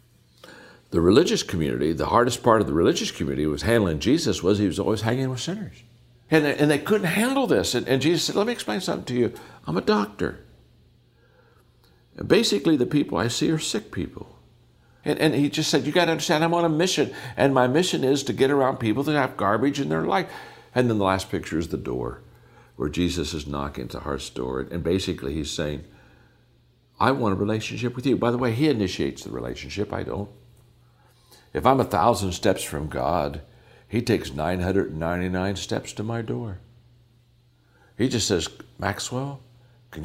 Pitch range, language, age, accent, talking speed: 100-140 Hz, English, 60-79, American, 190 wpm